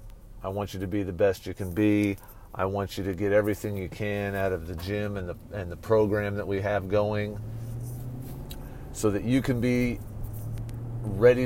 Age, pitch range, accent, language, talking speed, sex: 40-59, 100-115 Hz, American, English, 195 wpm, male